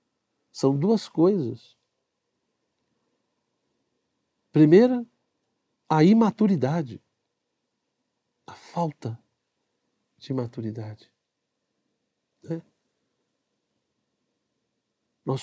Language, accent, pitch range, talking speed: Portuguese, Brazilian, 120-165 Hz, 45 wpm